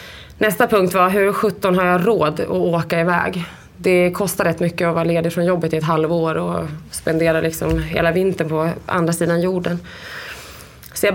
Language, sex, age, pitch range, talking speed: English, female, 20-39, 165-200 Hz, 185 wpm